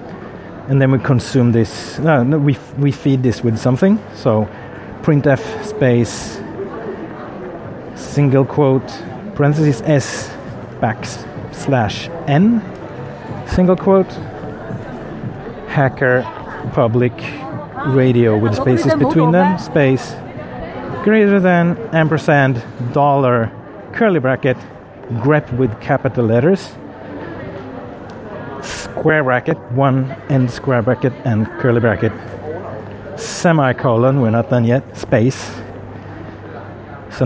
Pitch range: 115-145 Hz